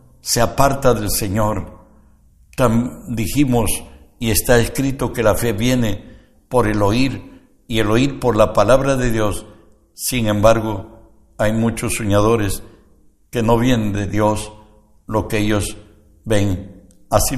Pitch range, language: 100-125 Hz, Spanish